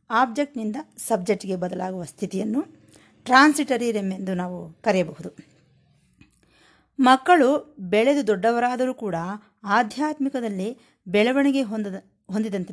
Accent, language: native, Kannada